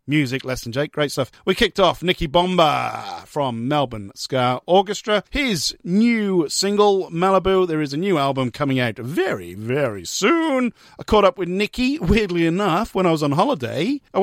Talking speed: 175 wpm